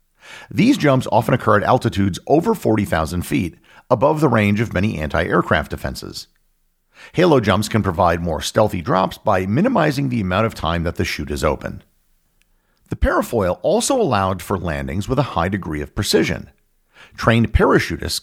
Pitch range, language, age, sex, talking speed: 90-115 Hz, English, 50-69, male, 160 wpm